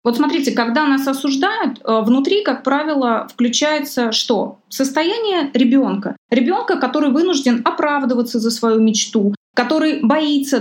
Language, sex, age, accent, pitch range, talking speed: Russian, female, 20-39, native, 235-295 Hz, 120 wpm